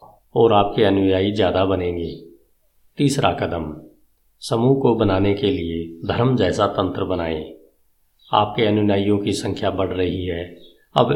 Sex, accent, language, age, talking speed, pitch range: male, native, Hindi, 50-69, 130 wpm, 90-110 Hz